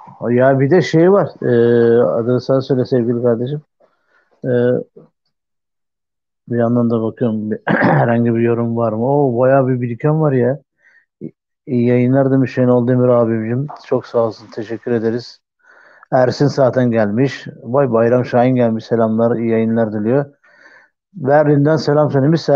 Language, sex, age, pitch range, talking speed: Turkish, male, 50-69, 120-150 Hz, 150 wpm